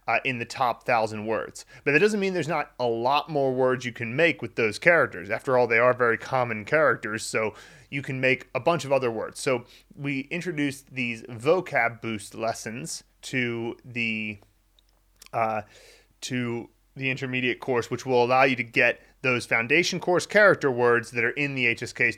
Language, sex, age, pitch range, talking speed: English, male, 30-49, 115-140 Hz, 180 wpm